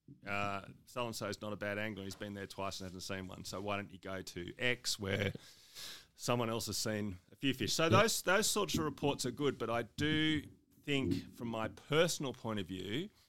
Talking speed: 215 wpm